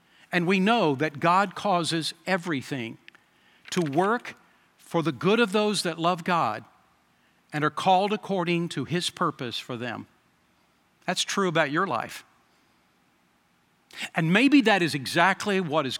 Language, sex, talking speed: English, male, 145 wpm